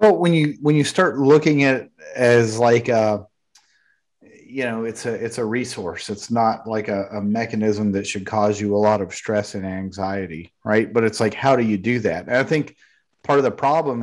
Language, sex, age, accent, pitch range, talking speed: English, male, 30-49, American, 105-130 Hz, 215 wpm